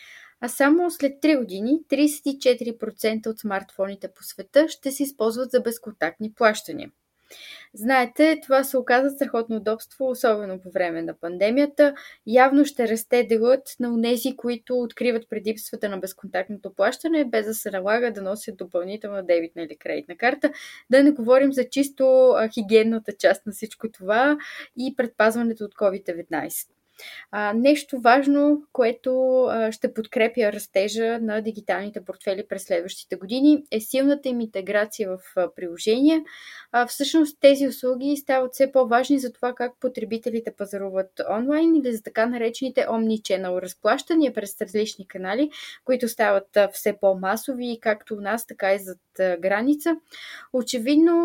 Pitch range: 205-265 Hz